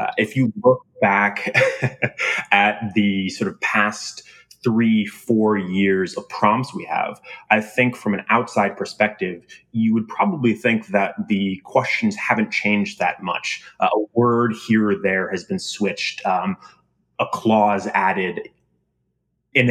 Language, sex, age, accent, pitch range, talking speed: English, male, 20-39, American, 100-115 Hz, 145 wpm